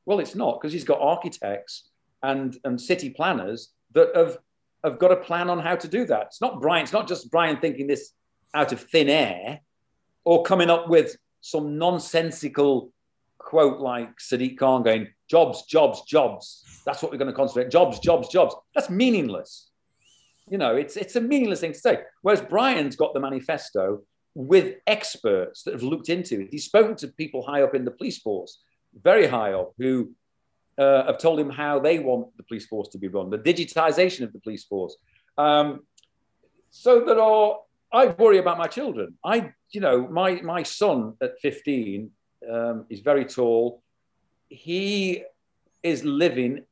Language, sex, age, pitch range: English, male, 40-59, 130-180 Hz